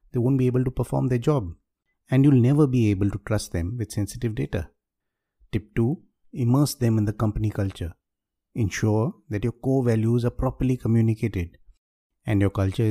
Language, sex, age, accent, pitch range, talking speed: English, male, 50-69, Indian, 95-120 Hz, 175 wpm